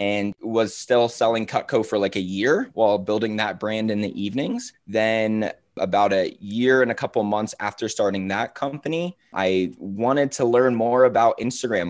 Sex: male